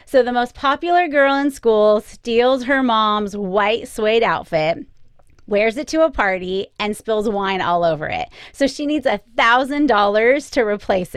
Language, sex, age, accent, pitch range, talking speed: English, female, 30-49, American, 210-275 Hz, 160 wpm